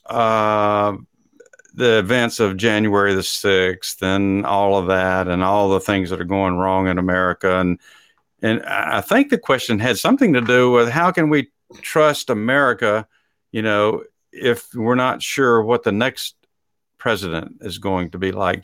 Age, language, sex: 50-69, English, male